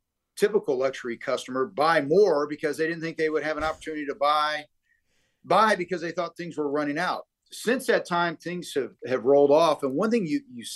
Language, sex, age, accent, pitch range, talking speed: English, male, 50-69, American, 150-205 Hz, 205 wpm